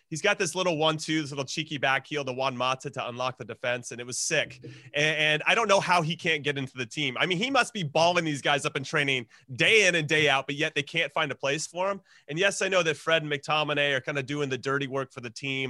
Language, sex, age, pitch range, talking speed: English, male, 30-49, 135-165 Hz, 290 wpm